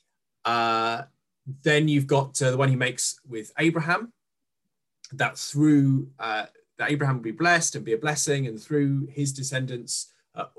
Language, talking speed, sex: English, 160 wpm, male